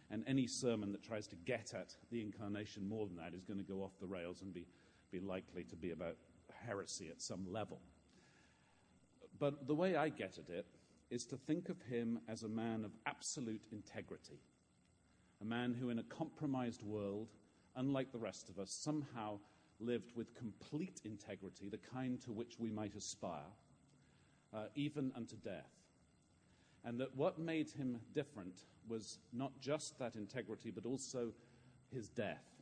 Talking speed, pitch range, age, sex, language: 170 wpm, 105-135 Hz, 40-59, male, English